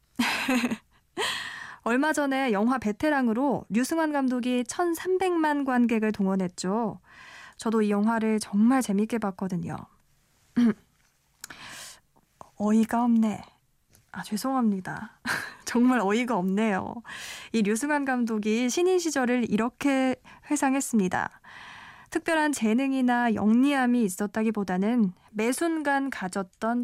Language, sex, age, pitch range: Korean, female, 20-39, 215-275 Hz